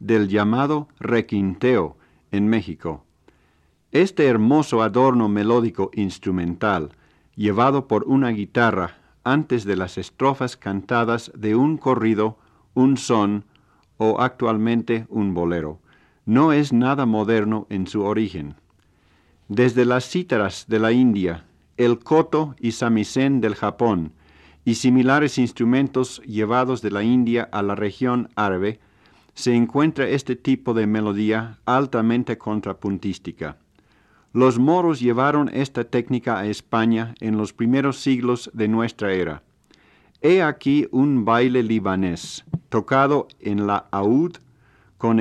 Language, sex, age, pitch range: Spanish, male, 50-69, 105-125 Hz